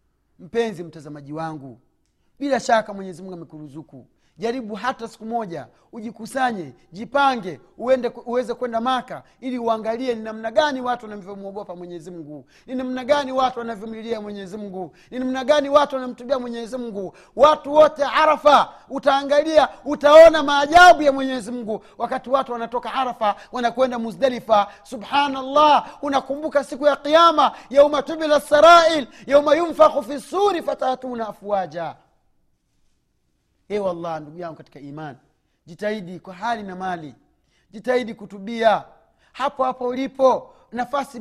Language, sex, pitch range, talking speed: Swahili, male, 205-265 Hz, 125 wpm